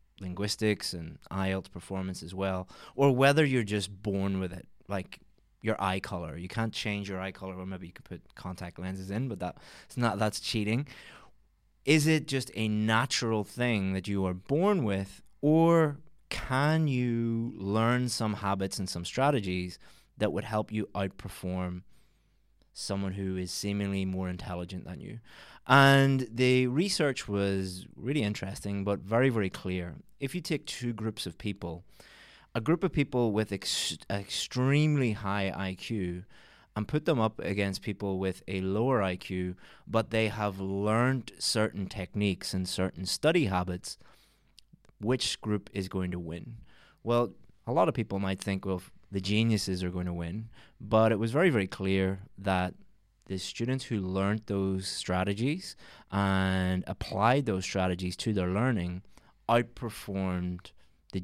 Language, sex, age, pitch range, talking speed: English, male, 20-39, 95-115 Hz, 155 wpm